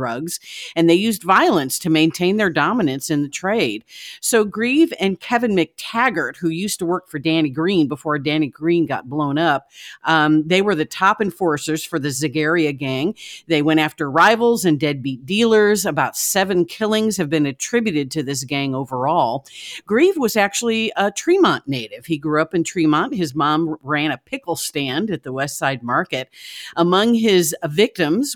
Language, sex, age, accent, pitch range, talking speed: English, female, 50-69, American, 150-195 Hz, 175 wpm